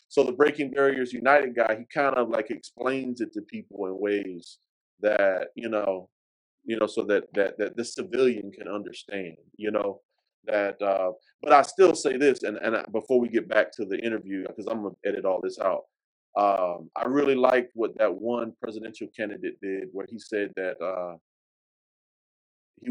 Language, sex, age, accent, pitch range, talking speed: English, male, 30-49, American, 95-125 Hz, 185 wpm